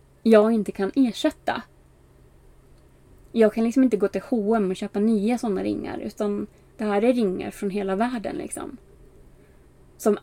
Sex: female